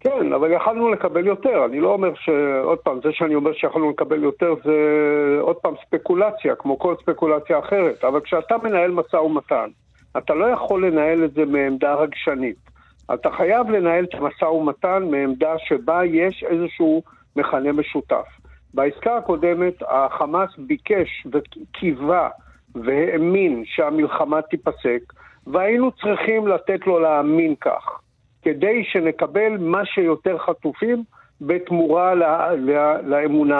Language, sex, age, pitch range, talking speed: Hebrew, male, 50-69, 150-210 Hz, 130 wpm